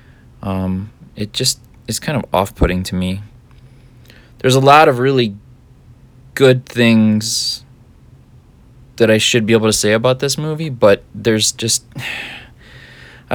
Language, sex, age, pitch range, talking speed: English, male, 20-39, 100-125 Hz, 135 wpm